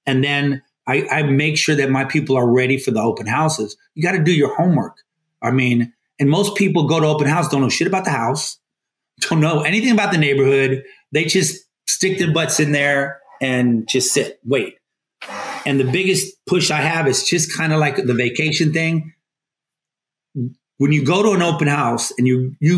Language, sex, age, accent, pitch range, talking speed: English, male, 30-49, American, 135-175 Hz, 200 wpm